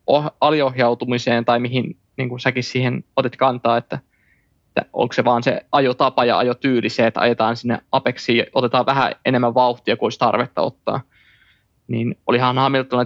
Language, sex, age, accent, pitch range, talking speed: Finnish, male, 20-39, native, 120-130 Hz, 145 wpm